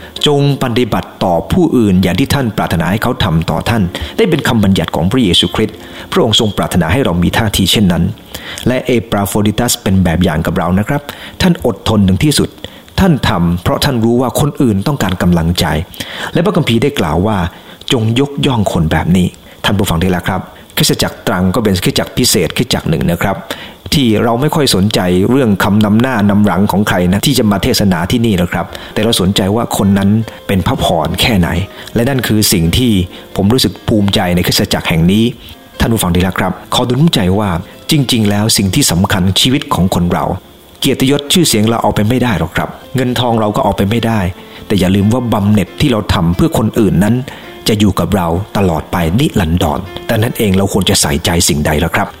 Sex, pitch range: male, 90-120 Hz